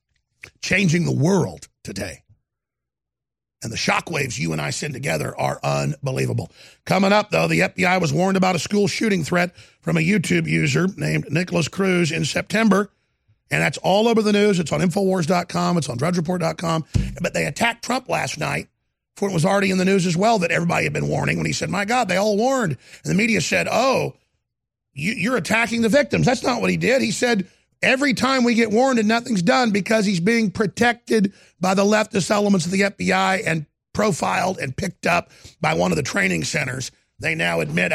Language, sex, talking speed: English, male, 195 wpm